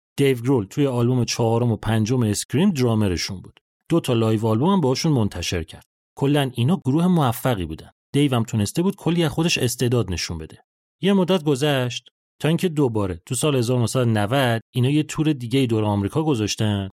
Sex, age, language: male, 30-49, Persian